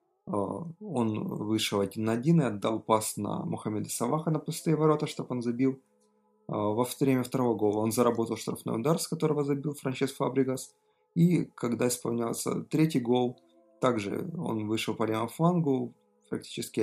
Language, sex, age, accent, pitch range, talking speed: Russian, male, 30-49, native, 110-150 Hz, 155 wpm